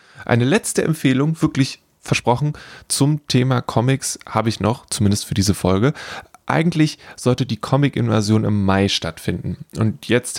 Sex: male